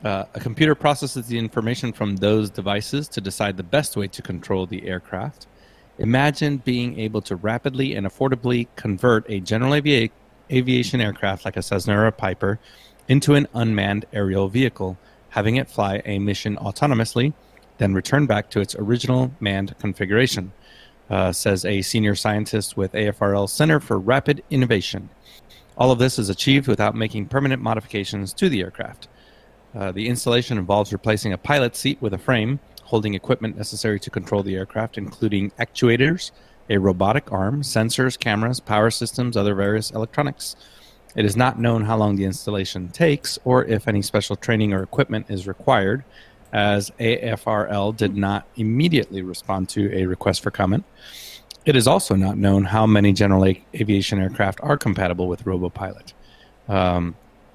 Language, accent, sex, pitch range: English, American, male, 100-125 Hz